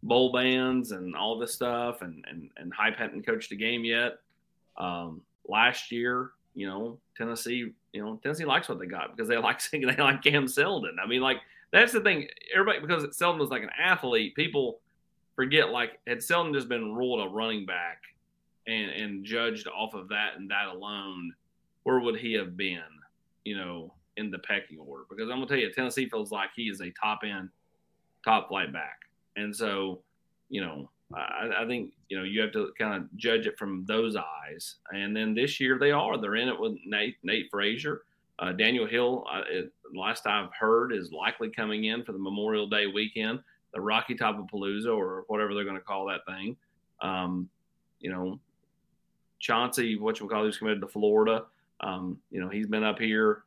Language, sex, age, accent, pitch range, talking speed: English, male, 30-49, American, 100-120 Hz, 200 wpm